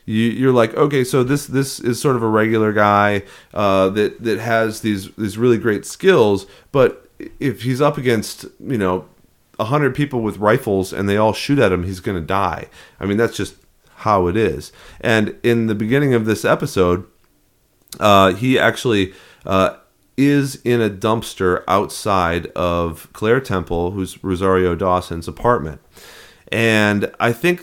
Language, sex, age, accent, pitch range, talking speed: English, male, 30-49, American, 95-120 Hz, 165 wpm